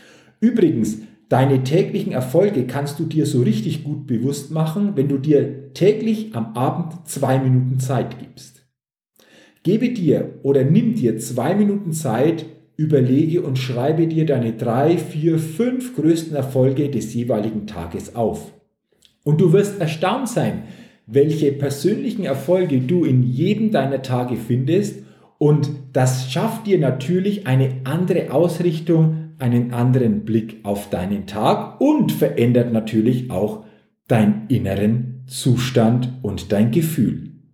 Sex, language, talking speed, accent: male, German, 130 wpm, German